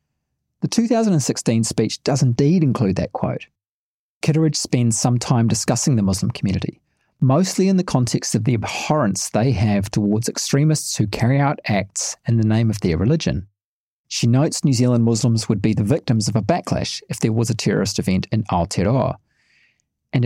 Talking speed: 170 wpm